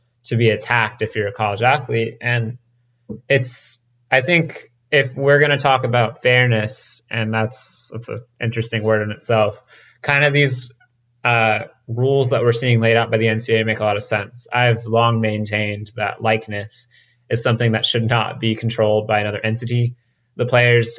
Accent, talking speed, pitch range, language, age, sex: American, 175 wpm, 105-120 Hz, English, 20-39, male